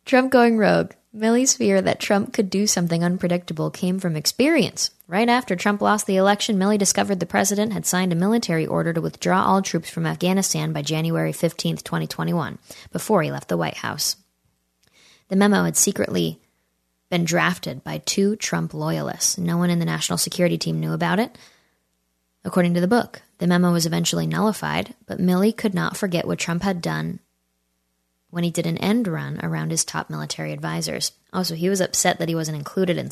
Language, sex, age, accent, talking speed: English, female, 20-39, American, 185 wpm